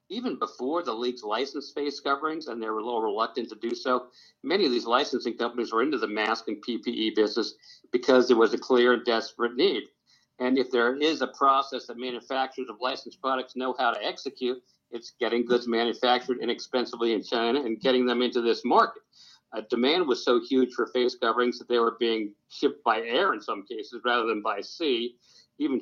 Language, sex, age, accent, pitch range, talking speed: English, male, 50-69, American, 120-145 Hz, 200 wpm